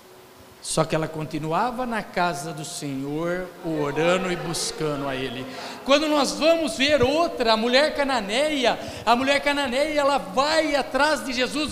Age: 60-79